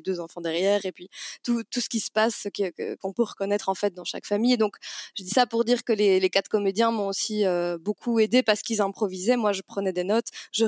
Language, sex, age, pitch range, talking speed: French, female, 20-39, 185-220 Hz, 260 wpm